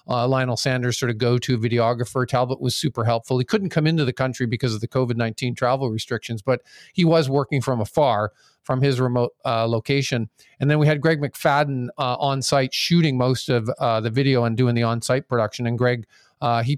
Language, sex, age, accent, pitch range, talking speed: English, male, 50-69, American, 120-140 Hz, 205 wpm